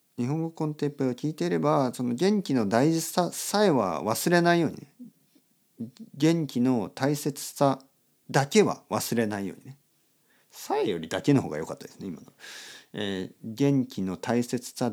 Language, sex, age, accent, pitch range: Japanese, male, 50-69, native, 100-155 Hz